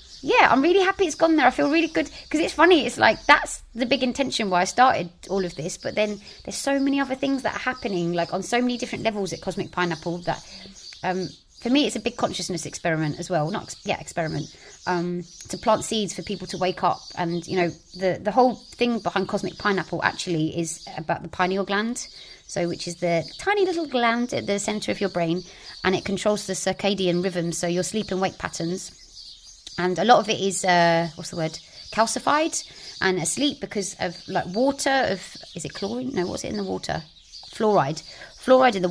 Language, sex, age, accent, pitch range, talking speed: English, female, 30-49, British, 175-235 Hz, 215 wpm